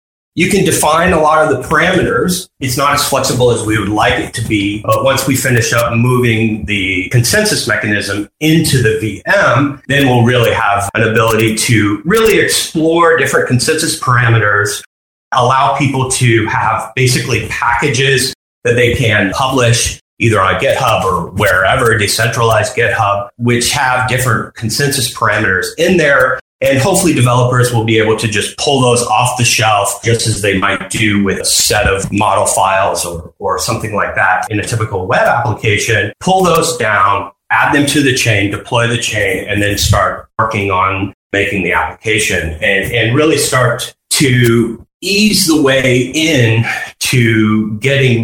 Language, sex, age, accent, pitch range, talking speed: English, male, 30-49, American, 105-130 Hz, 165 wpm